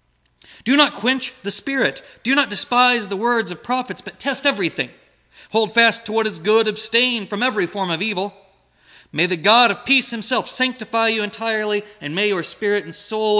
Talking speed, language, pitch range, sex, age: 190 wpm, English, 165-220 Hz, male, 30-49